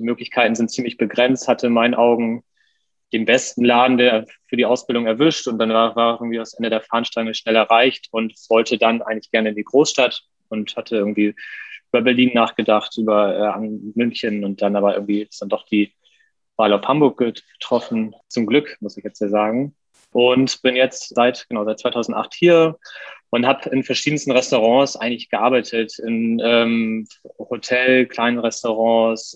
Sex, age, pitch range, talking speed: male, 20-39, 110-130 Hz, 170 wpm